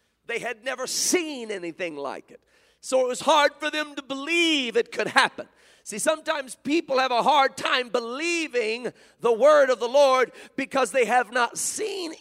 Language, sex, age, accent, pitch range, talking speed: English, male, 50-69, American, 230-310 Hz, 175 wpm